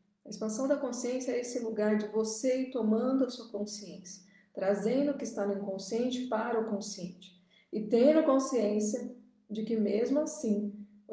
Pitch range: 205-240 Hz